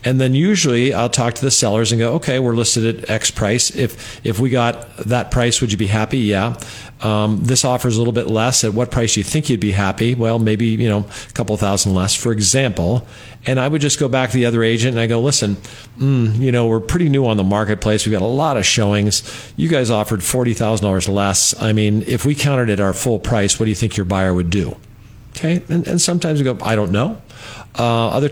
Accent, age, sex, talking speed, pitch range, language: American, 50-69, male, 245 wpm, 110-130 Hz, English